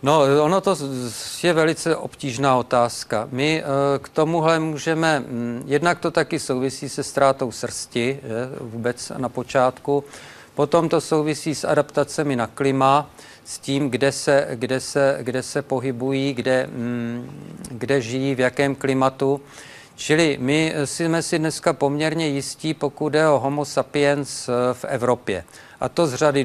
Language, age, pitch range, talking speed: Czech, 50-69, 130-145 Hz, 130 wpm